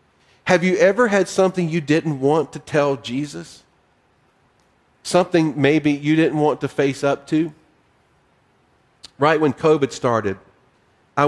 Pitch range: 125-165 Hz